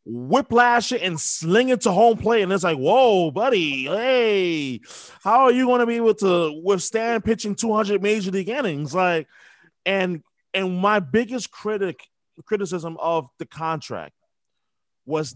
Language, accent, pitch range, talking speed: English, American, 145-195 Hz, 150 wpm